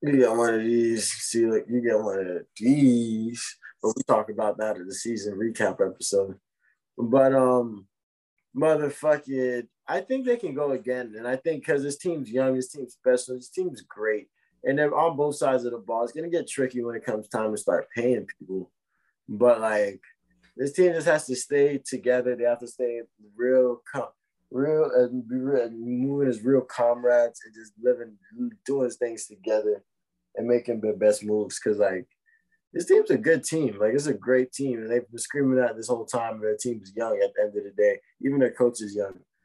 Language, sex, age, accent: English, male, 20-39, American